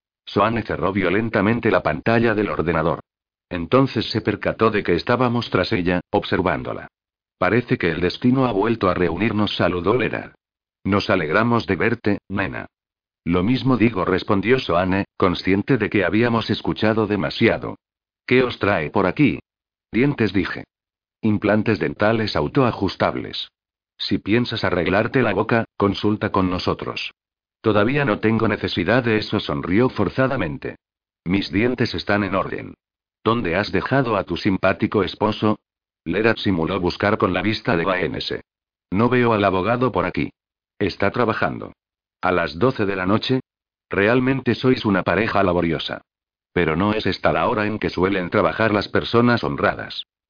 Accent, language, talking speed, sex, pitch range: Spanish, Spanish, 145 wpm, male, 95-115 Hz